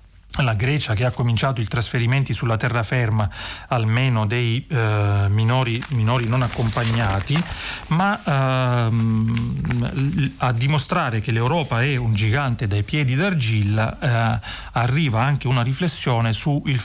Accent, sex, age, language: native, male, 40-59, Italian